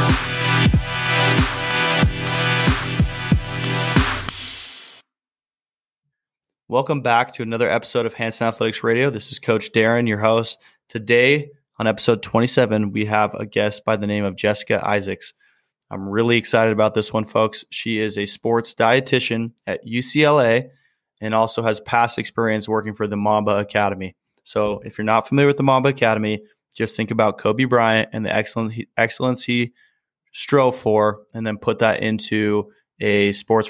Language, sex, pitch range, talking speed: English, male, 110-125 Hz, 145 wpm